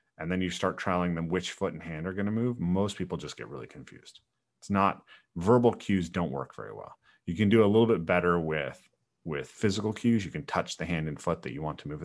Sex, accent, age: male, American, 30-49